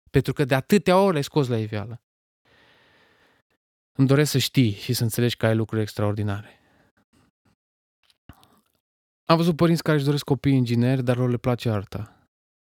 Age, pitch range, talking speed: 20-39, 100-130 Hz, 155 wpm